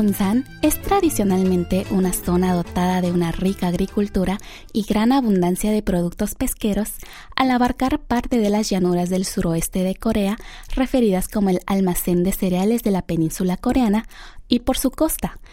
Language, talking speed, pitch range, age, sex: Spanish, 155 wpm, 185-230 Hz, 20-39, female